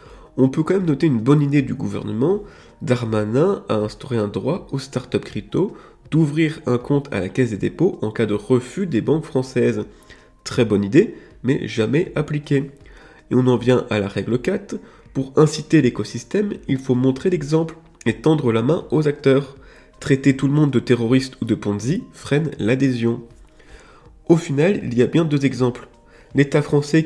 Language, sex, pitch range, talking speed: French, male, 115-150 Hz, 180 wpm